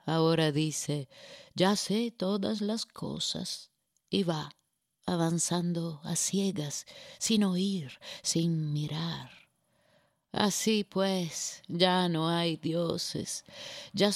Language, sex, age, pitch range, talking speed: Spanish, female, 30-49, 165-205 Hz, 100 wpm